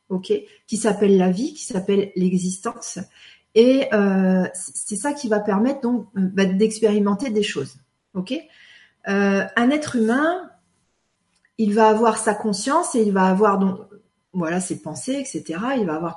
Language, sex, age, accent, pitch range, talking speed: French, female, 40-59, French, 190-230 Hz, 155 wpm